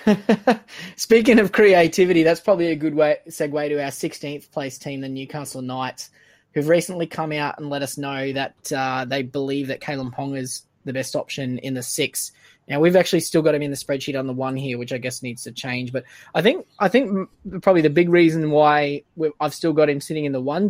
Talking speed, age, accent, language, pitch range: 225 wpm, 20-39, Australian, English, 125-155 Hz